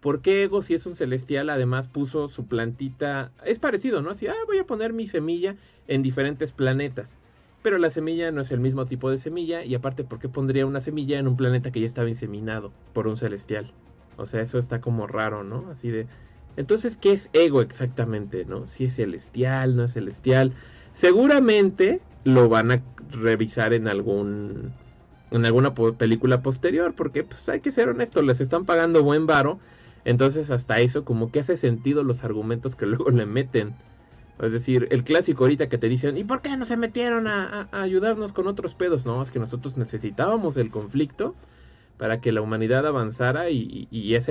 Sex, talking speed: male, 195 wpm